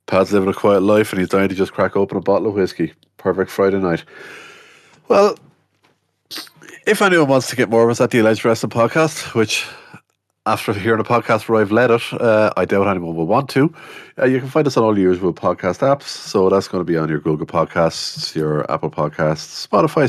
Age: 30-49